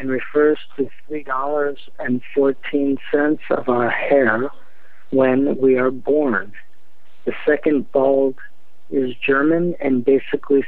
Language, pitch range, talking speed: English, 130-145 Hz, 100 wpm